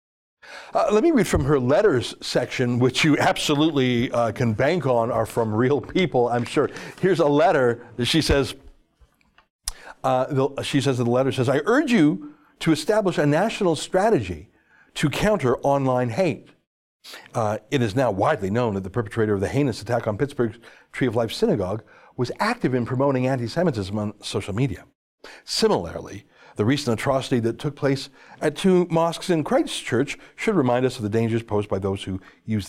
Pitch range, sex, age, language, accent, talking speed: 115-155 Hz, male, 60-79, English, American, 175 wpm